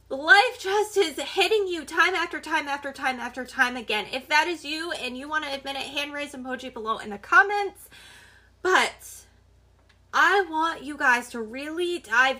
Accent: American